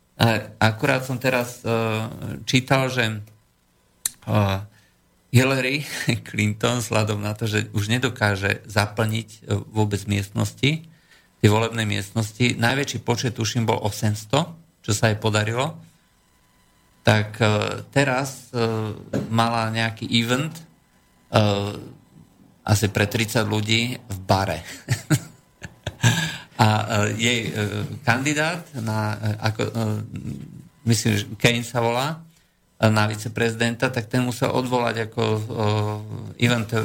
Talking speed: 90 wpm